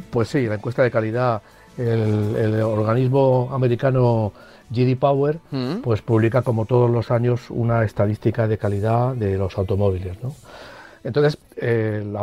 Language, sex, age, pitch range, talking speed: Spanish, male, 50-69, 105-125 Hz, 130 wpm